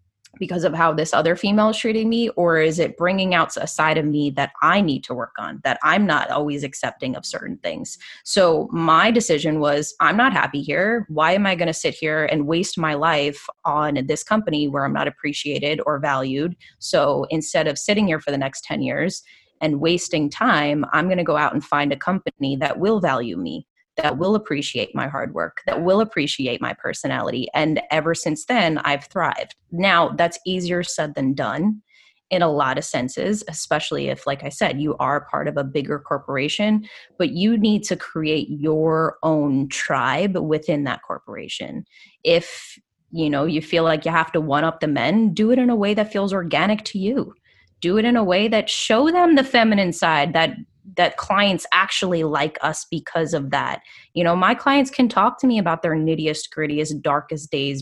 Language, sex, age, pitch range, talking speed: English, female, 20-39, 145-195 Hz, 200 wpm